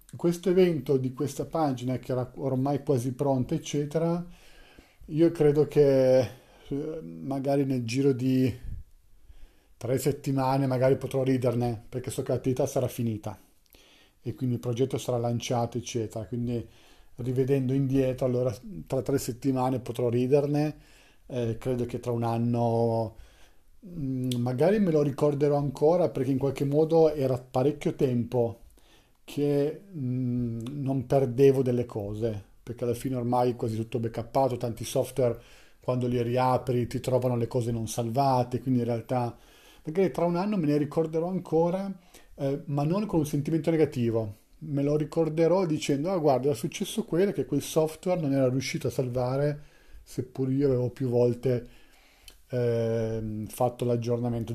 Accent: native